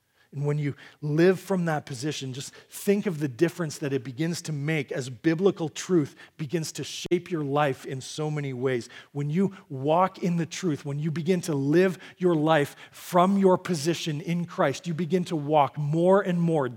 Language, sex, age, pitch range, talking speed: English, male, 40-59, 140-185 Hz, 195 wpm